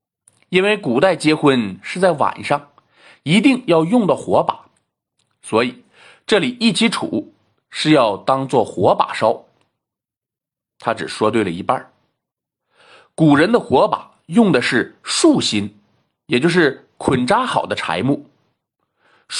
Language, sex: Chinese, male